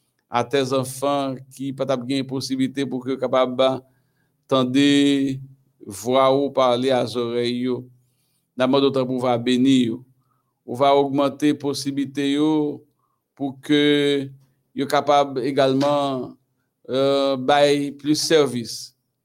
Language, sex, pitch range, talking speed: French, male, 130-145 Hz, 110 wpm